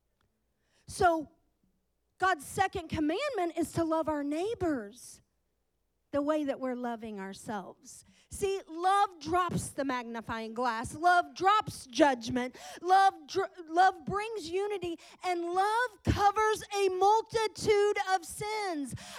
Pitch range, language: 285-430 Hz, English